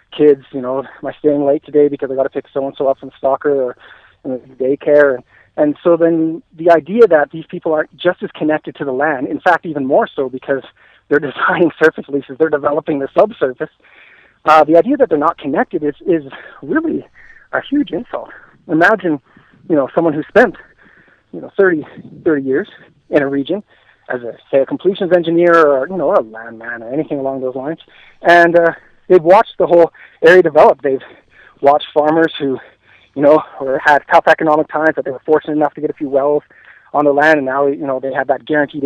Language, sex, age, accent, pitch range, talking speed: English, male, 40-59, American, 140-165 Hz, 205 wpm